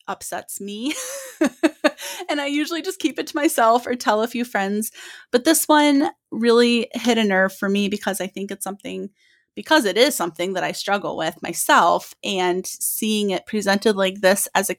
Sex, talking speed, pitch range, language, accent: female, 185 wpm, 185-235 Hz, English, American